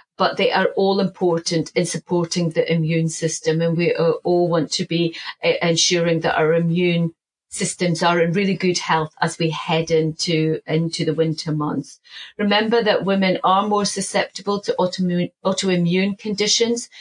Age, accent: 40-59, British